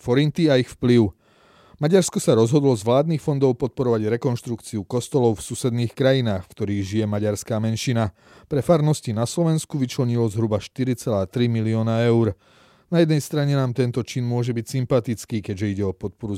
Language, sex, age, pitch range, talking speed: Slovak, male, 30-49, 110-135 Hz, 160 wpm